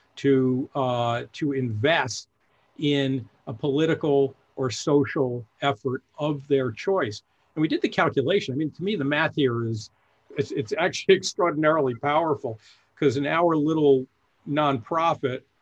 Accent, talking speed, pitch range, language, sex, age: American, 140 wpm, 130-170 Hz, English, male, 50-69